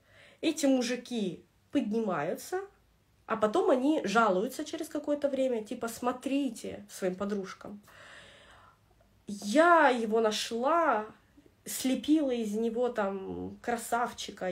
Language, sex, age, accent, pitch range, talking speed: Russian, female, 20-39, native, 190-255 Hz, 90 wpm